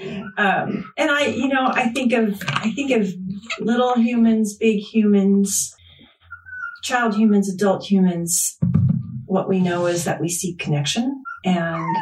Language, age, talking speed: English, 40-59, 135 wpm